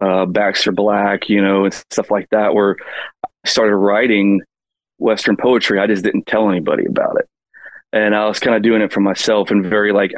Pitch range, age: 100-110 Hz, 30-49